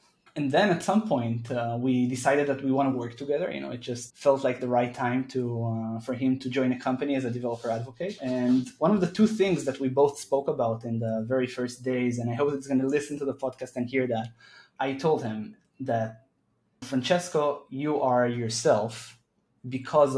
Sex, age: male, 20-39